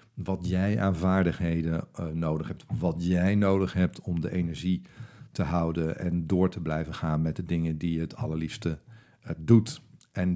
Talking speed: 180 wpm